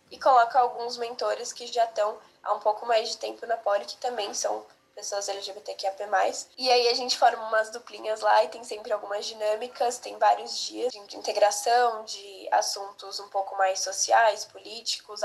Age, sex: 10-29, female